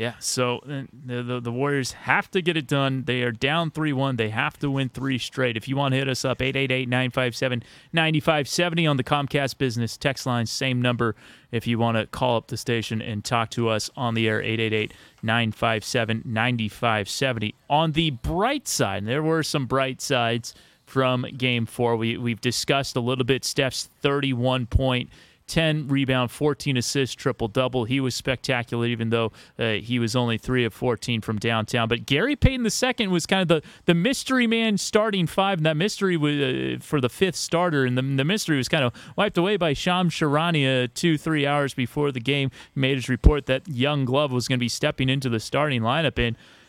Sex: male